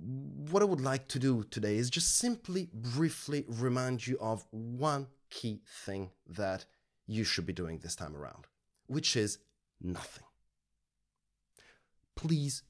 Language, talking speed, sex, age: English, 135 wpm, male, 30-49